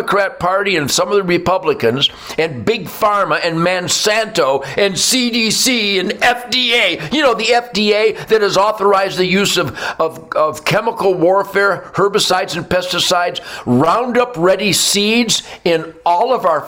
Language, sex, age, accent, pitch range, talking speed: English, male, 60-79, American, 135-210 Hz, 140 wpm